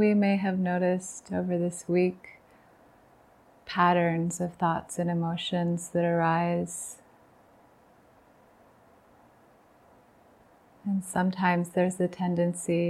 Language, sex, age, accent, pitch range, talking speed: English, female, 30-49, American, 165-180 Hz, 90 wpm